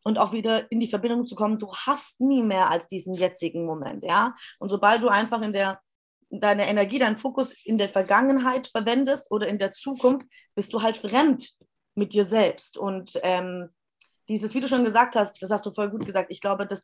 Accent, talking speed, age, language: German, 210 wpm, 20-39, German